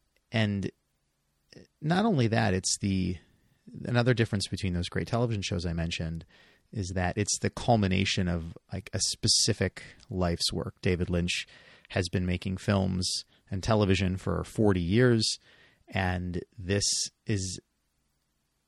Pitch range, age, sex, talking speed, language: 90-105 Hz, 30-49, male, 130 wpm, English